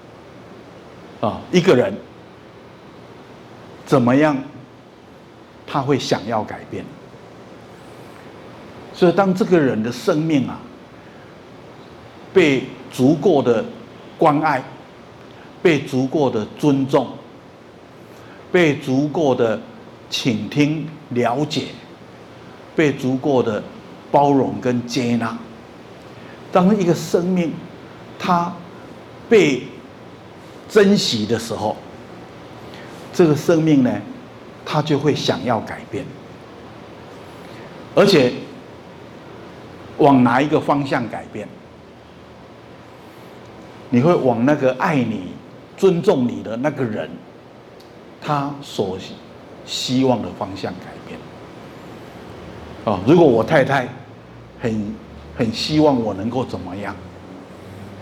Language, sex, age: Chinese, male, 60-79